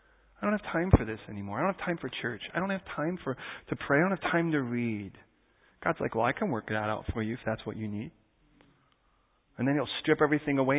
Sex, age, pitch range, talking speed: male, 40-59, 110-150 Hz, 260 wpm